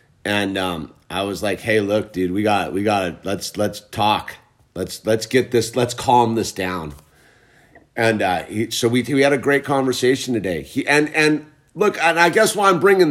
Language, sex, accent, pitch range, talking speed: English, male, American, 110-145 Hz, 190 wpm